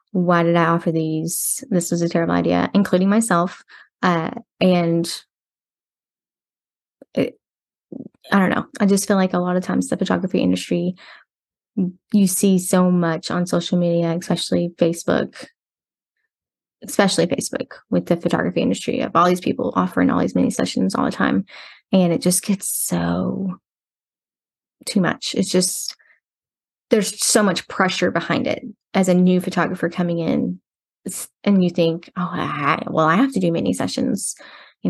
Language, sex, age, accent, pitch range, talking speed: English, female, 20-39, American, 175-200 Hz, 155 wpm